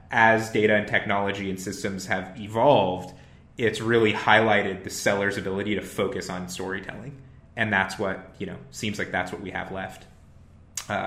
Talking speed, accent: 170 wpm, American